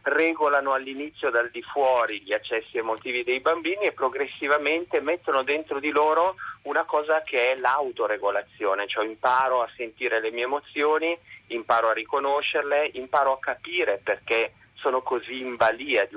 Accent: native